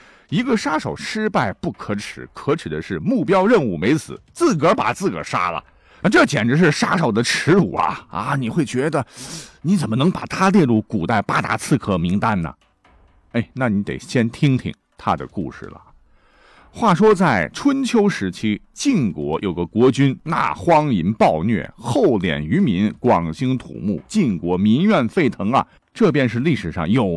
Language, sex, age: Chinese, male, 50-69